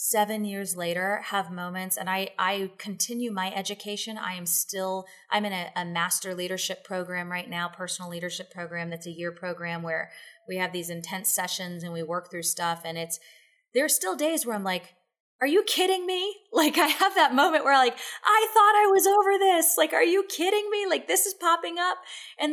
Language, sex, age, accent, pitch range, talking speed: English, female, 30-49, American, 185-290 Hz, 210 wpm